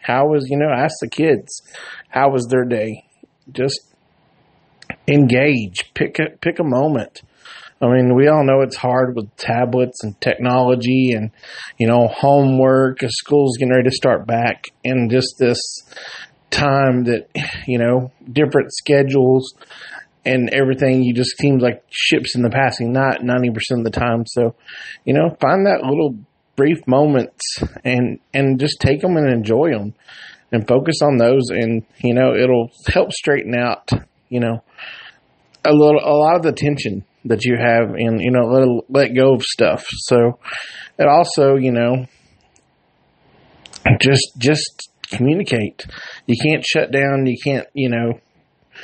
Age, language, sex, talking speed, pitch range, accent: 30-49, English, male, 155 wpm, 120-135 Hz, American